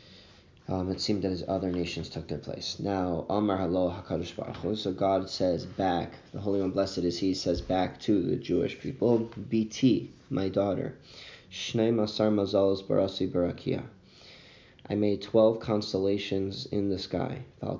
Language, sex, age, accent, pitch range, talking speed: English, male, 20-39, American, 95-105 Hz, 155 wpm